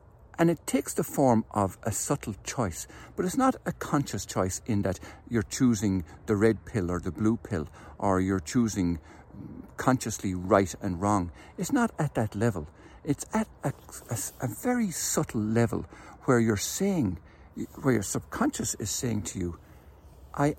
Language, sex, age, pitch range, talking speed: English, male, 60-79, 95-130 Hz, 165 wpm